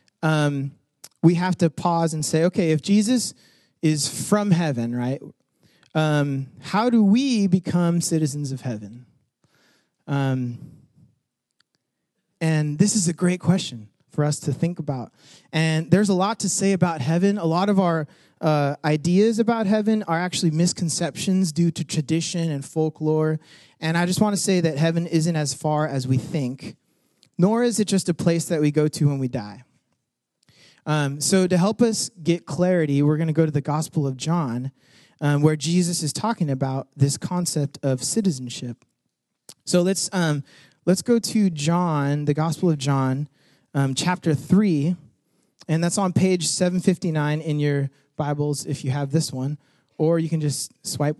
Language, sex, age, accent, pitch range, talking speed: English, male, 30-49, American, 145-180 Hz, 170 wpm